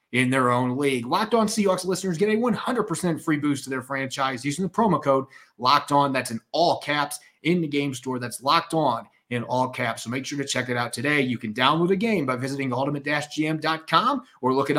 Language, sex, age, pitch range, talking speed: English, male, 30-49, 130-165 Hz, 225 wpm